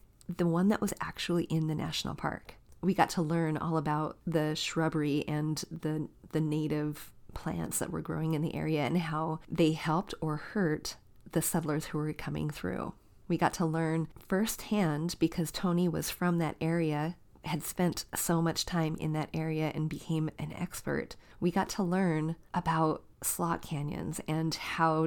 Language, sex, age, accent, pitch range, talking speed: English, female, 30-49, American, 155-170 Hz, 170 wpm